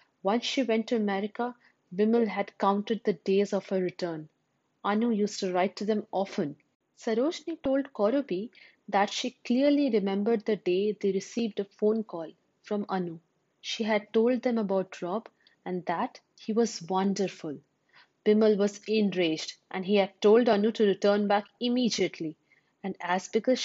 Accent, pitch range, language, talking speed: Indian, 190-230 Hz, English, 155 wpm